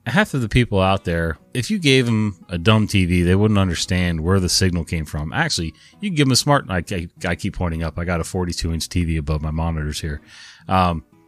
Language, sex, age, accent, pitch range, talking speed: English, male, 30-49, American, 85-105 Hz, 240 wpm